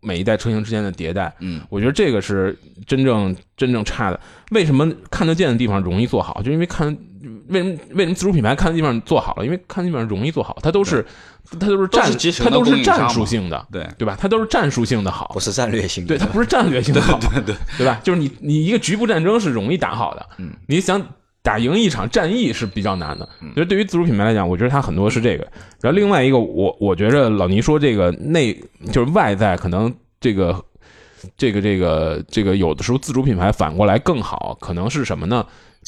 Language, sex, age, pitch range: Chinese, male, 20-39, 100-155 Hz